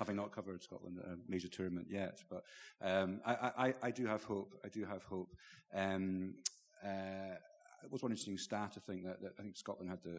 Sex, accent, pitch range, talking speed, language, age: male, British, 90-100 Hz, 220 wpm, English, 40-59